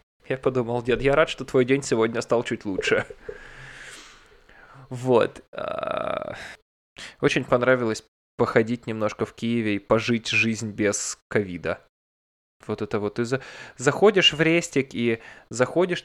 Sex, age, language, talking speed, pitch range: male, 20-39, Russian, 125 wpm, 110-130 Hz